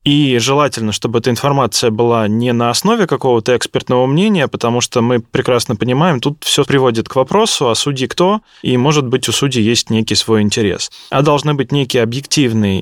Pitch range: 110-135 Hz